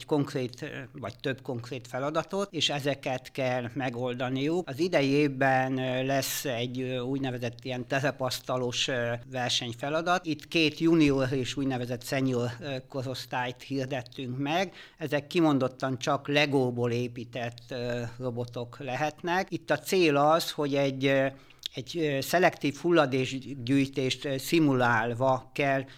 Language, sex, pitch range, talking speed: Hungarian, male, 125-145 Hz, 100 wpm